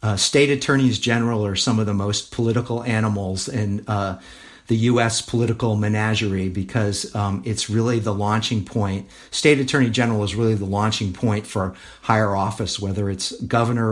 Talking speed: 165 wpm